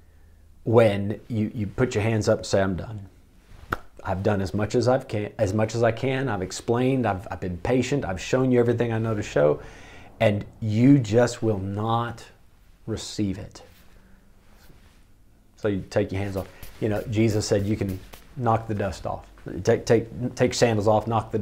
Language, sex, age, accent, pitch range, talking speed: English, male, 40-59, American, 95-125 Hz, 190 wpm